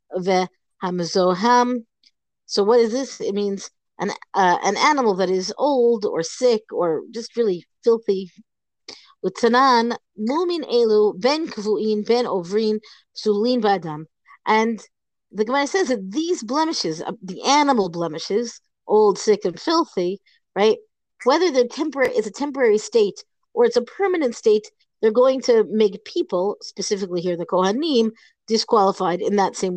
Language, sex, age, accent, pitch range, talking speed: English, female, 40-59, American, 190-250 Hz, 125 wpm